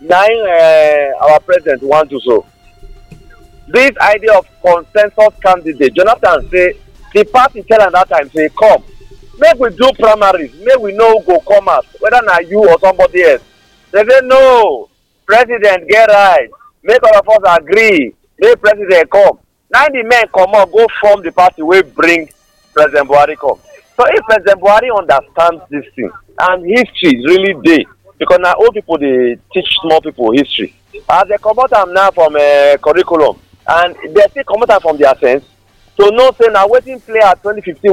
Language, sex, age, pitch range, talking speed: English, male, 50-69, 165-255 Hz, 185 wpm